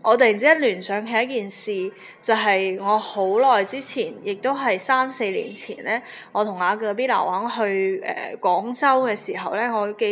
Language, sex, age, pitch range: Chinese, female, 20-39, 195-260 Hz